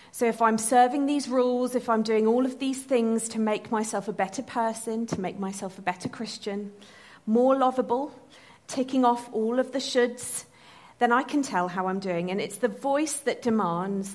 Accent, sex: British, female